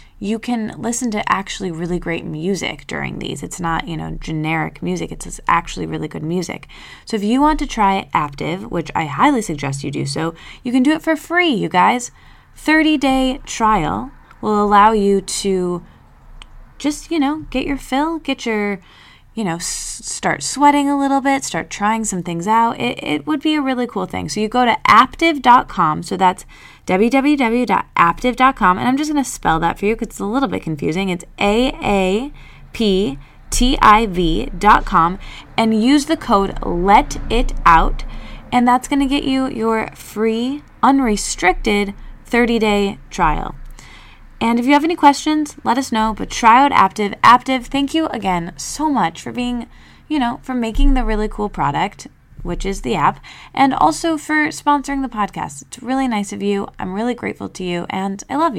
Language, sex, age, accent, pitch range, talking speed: English, female, 20-39, American, 195-275 Hz, 175 wpm